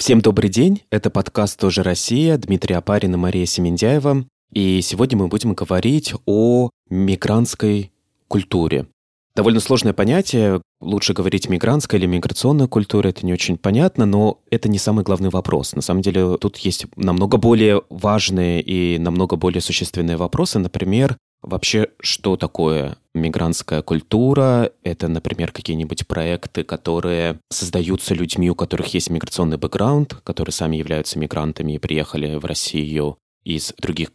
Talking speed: 140 wpm